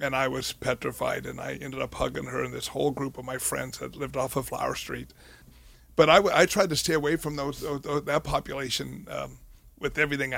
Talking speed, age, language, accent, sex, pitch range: 225 wpm, 60-79, English, American, male, 130-150 Hz